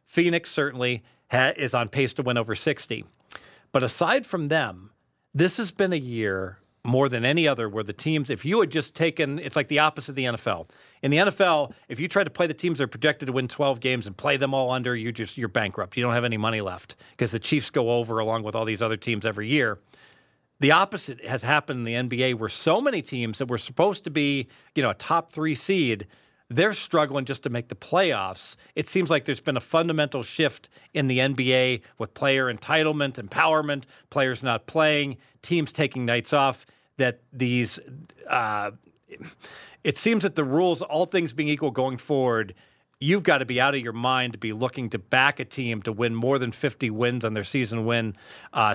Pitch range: 120-150 Hz